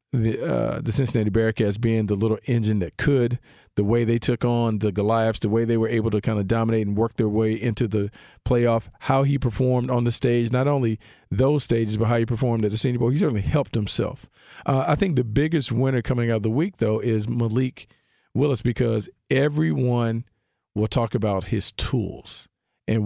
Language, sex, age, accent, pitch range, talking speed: English, male, 50-69, American, 105-120 Hz, 205 wpm